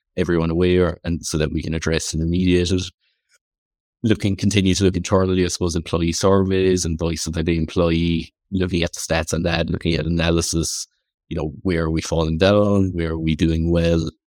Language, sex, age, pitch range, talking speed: English, male, 30-49, 80-95 Hz, 190 wpm